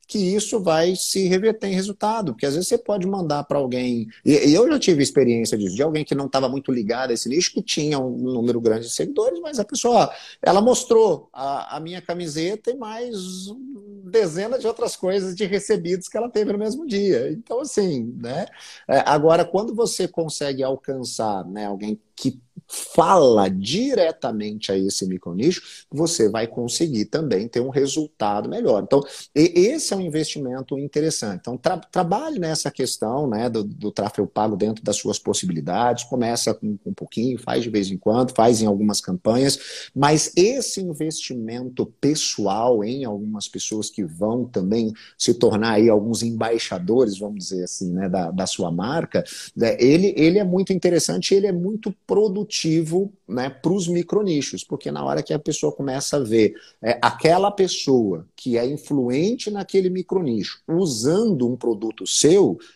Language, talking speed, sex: Portuguese, 165 wpm, male